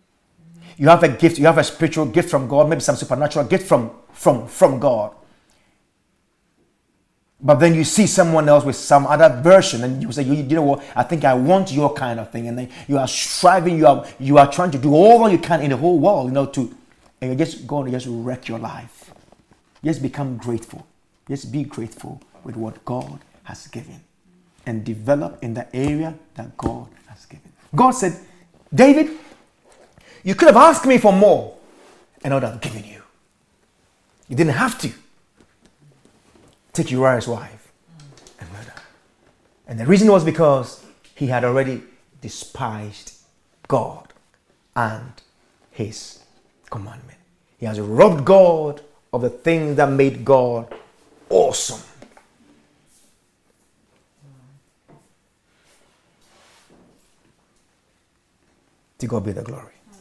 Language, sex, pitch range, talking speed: English, male, 125-165 Hz, 150 wpm